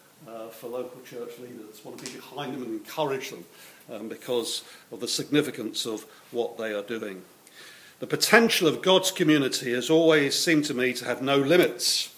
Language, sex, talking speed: English, male, 180 wpm